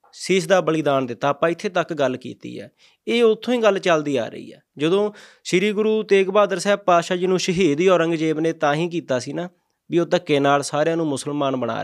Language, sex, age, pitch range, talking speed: Punjabi, male, 20-39, 140-175 Hz, 220 wpm